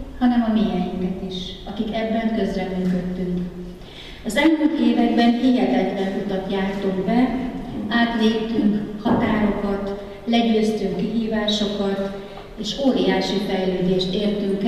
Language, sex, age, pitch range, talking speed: Hungarian, female, 30-49, 195-240 Hz, 90 wpm